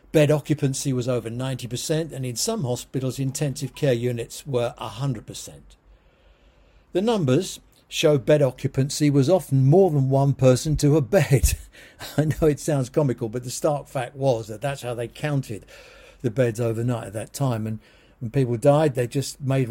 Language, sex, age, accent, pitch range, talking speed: English, male, 60-79, British, 120-150 Hz, 170 wpm